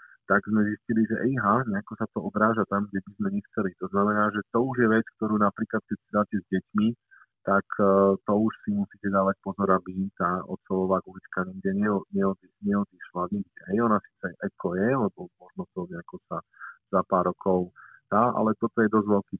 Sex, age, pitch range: male, 50-69, 95-110 Hz